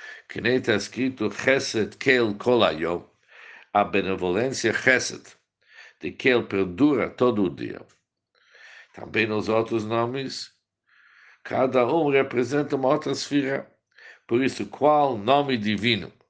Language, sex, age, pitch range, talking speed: Portuguese, male, 60-79, 105-140 Hz, 110 wpm